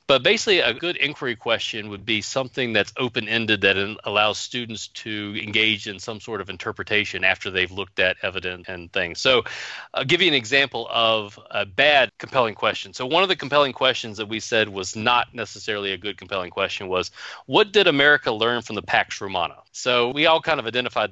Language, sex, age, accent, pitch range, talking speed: English, male, 40-59, American, 100-125 Hz, 200 wpm